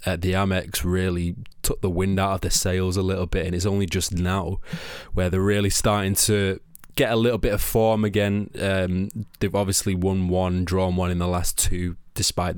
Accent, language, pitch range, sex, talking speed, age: British, English, 90-105 Hz, male, 200 wpm, 20-39